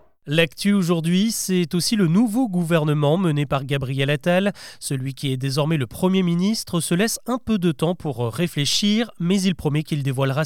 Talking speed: 180 wpm